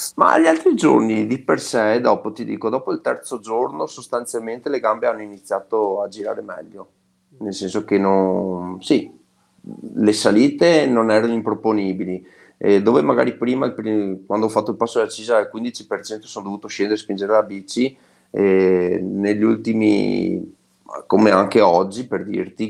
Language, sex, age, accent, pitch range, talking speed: Italian, male, 30-49, native, 95-115 Hz, 160 wpm